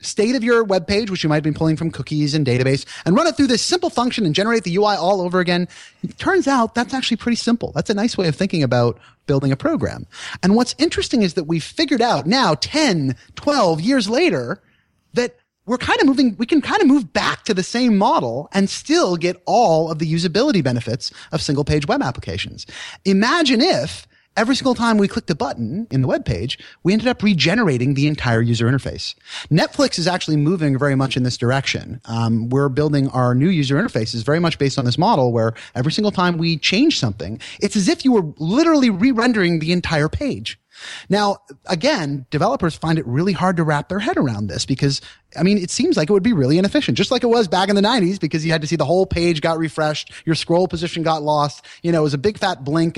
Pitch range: 140-215 Hz